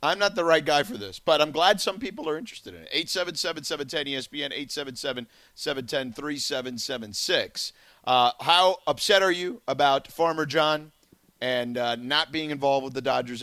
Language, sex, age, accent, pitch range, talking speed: English, male, 40-59, American, 125-200 Hz, 155 wpm